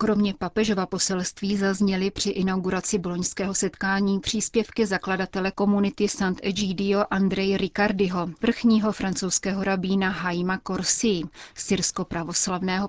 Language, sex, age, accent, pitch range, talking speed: Czech, female, 30-49, native, 185-210 Hz, 100 wpm